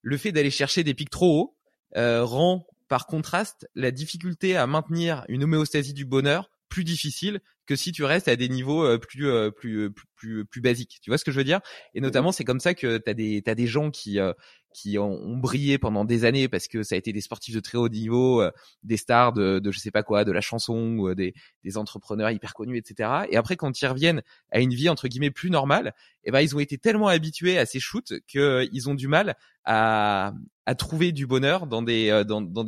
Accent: French